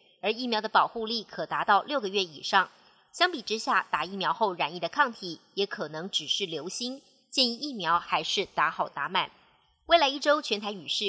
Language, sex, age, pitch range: Chinese, male, 30-49, 180-230 Hz